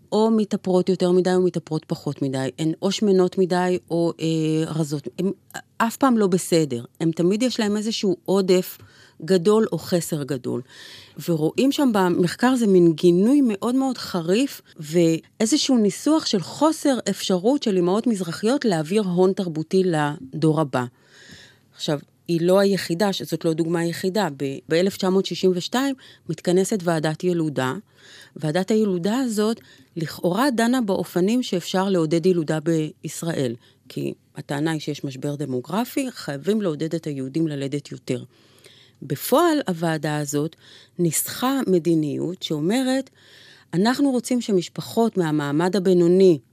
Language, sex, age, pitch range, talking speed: Hebrew, female, 30-49, 155-205 Hz, 125 wpm